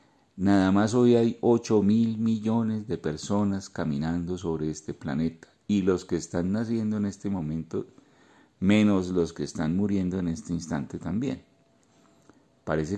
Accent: Colombian